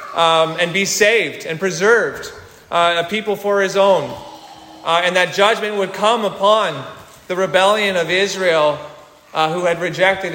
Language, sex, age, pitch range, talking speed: English, male, 30-49, 175-220 Hz, 155 wpm